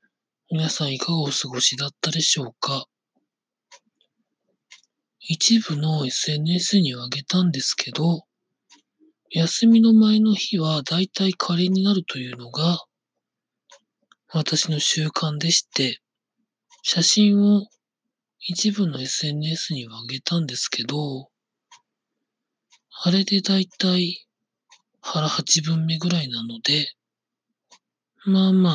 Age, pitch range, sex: 40-59, 150-195 Hz, male